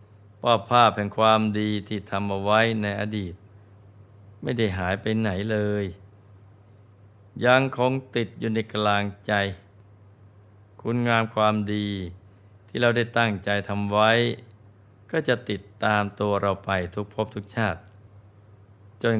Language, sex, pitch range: Thai, male, 100-110 Hz